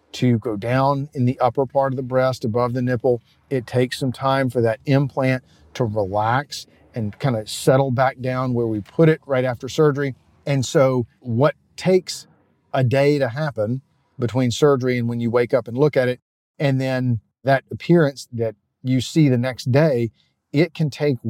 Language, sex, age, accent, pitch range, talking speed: English, male, 40-59, American, 125-145 Hz, 190 wpm